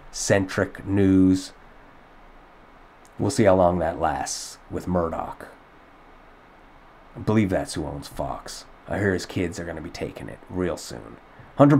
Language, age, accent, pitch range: English, 30-49, American, 95-120 Hz